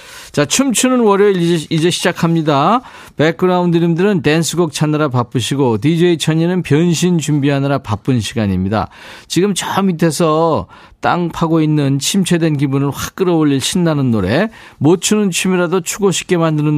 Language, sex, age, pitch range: Korean, male, 40-59, 130-175 Hz